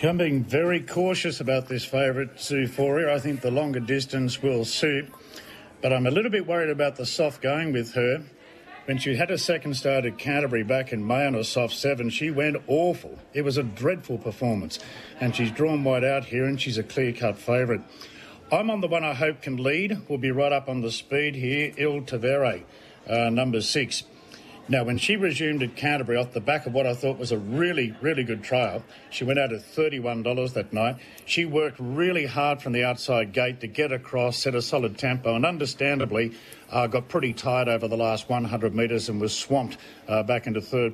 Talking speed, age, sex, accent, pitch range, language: 210 wpm, 50-69, male, Australian, 120-145 Hz, English